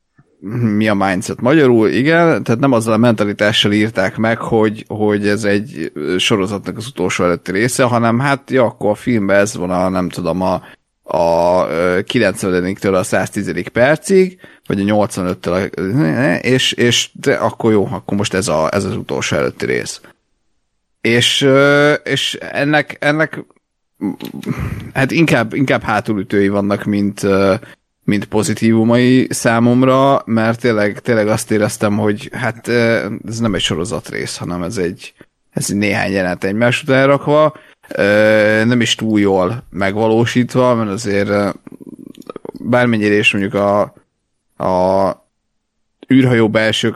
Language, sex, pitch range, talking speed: Hungarian, male, 100-120 Hz, 135 wpm